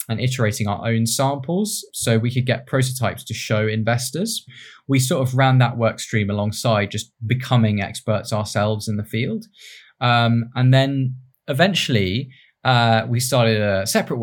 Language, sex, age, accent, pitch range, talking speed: English, male, 20-39, British, 105-130 Hz, 155 wpm